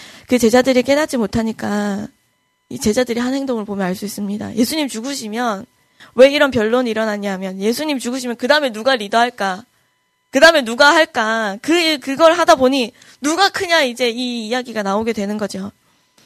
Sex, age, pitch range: female, 20-39, 210-275 Hz